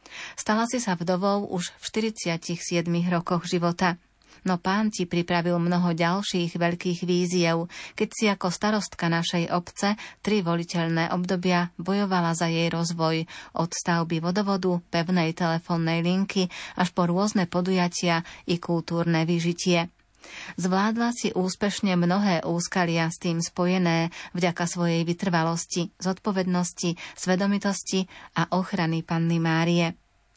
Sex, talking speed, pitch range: female, 120 wpm, 170-185 Hz